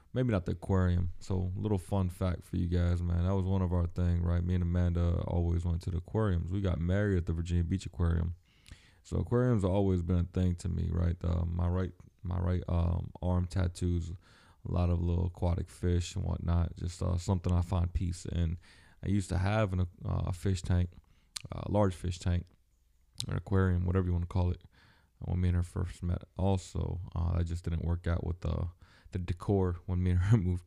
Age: 20-39